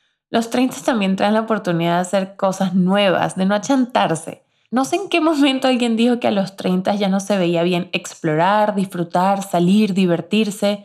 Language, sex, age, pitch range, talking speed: Spanish, female, 20-39, 180-225 Hz, 185 wpm